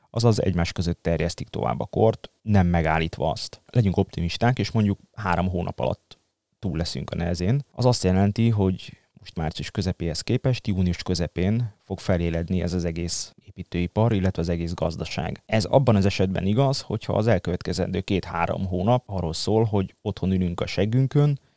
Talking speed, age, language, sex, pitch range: 160 wpm, 20-39, Hungarian, male, 90-110 Hz